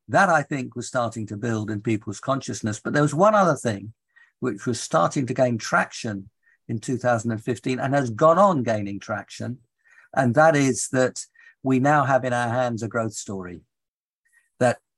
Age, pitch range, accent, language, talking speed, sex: 50-69, 115-150 Hz, British, English, 175 wpm, male